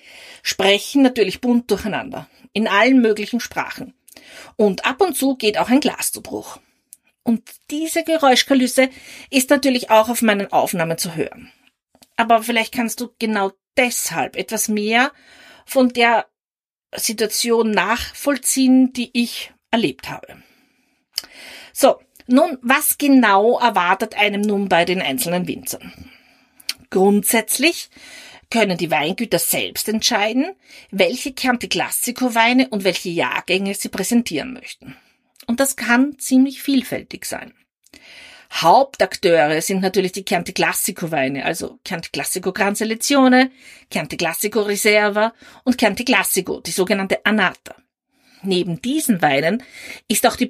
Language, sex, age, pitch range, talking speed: German, female, 40-59, 200-260 Hz, 120 wpm